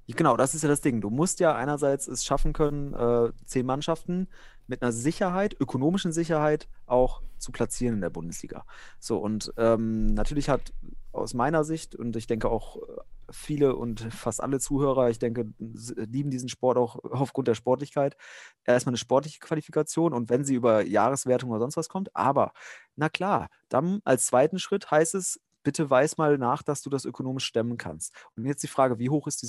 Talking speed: 185 wpm